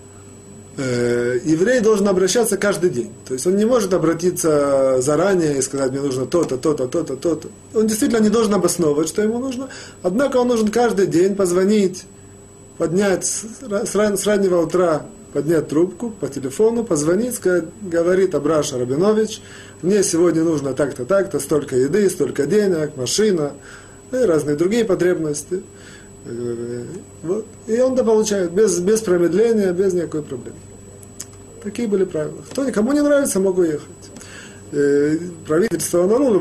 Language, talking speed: Russian, 140 wpm